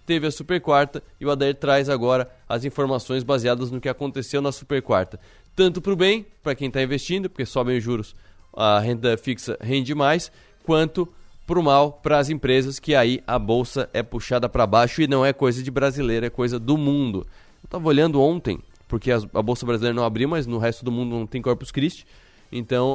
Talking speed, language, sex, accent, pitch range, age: 210 wpm, Portuguese, male, Brazilian, 120-145 Hz, 20-39